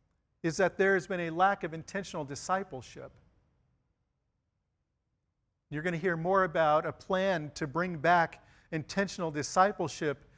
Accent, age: American, 50-69